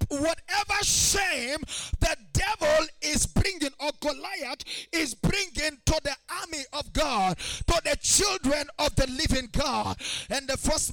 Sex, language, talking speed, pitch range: male, English, 135 wpm, 280-330 Hz